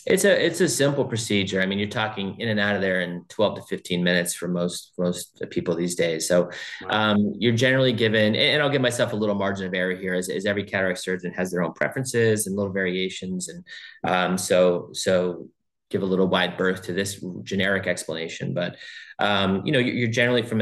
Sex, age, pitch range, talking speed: male, 30-49, 90-105 Hz, 215 wpm